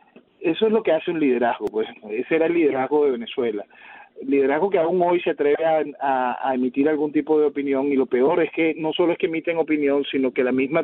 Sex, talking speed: male, 235 wpm